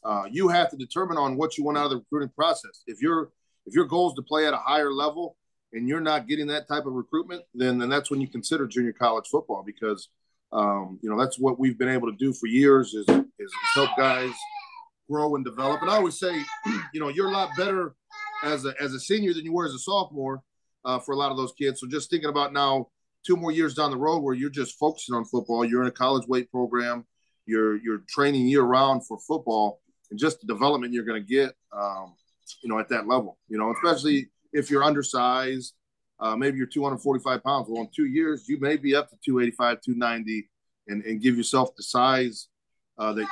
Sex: male